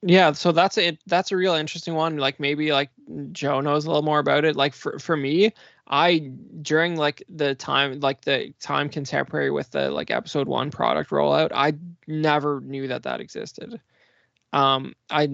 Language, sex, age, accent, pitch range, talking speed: English, male, 20-39, American, 135-165 Hz, 185 wpm